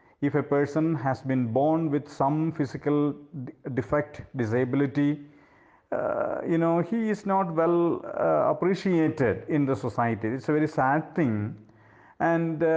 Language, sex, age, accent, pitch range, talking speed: English, male, 50-69, Indian, 120-160 Hz, 135 wpm